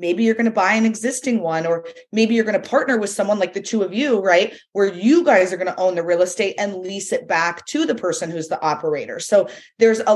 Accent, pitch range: American, 180-225 Hz